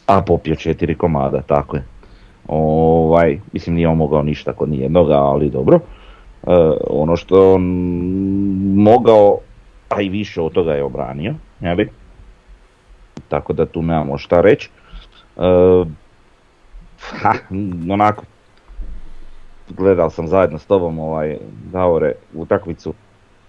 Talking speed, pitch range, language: 110 wpm, 75-100 Hz, Croatian